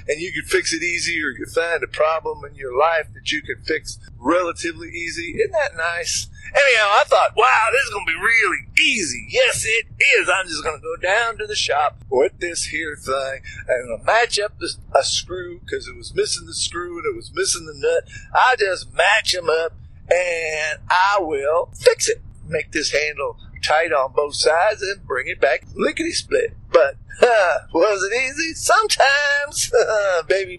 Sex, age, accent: male, 50-69, American